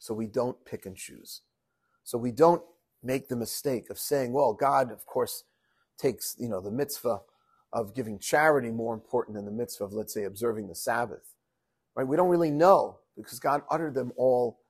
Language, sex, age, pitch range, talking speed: English, male, 40-59, 110-135 Hz, 180 wpm